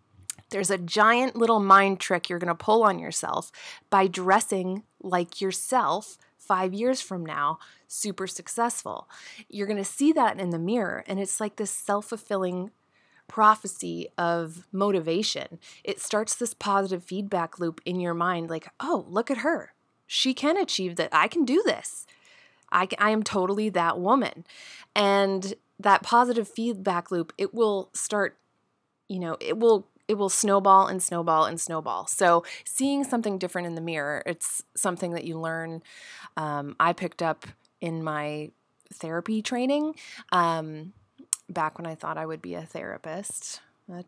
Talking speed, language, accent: 160 wpm, English, American